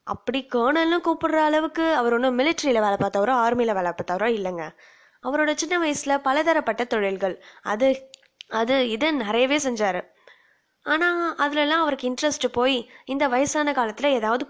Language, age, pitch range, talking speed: Tamil, 20-39, 225-285 Hz, 130 wpm